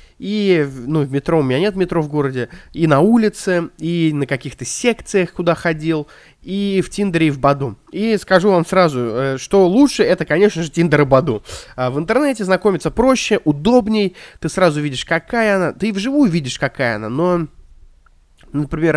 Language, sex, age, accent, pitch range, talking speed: Russian, male, 20-39, native, 135-185 Hz, 175 wpm